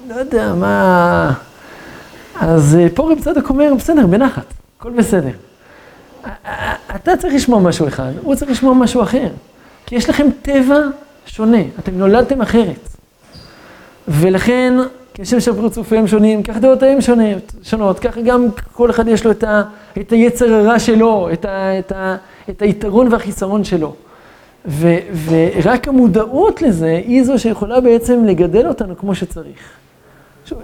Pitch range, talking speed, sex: 160-230 Hz, 150 wpm, male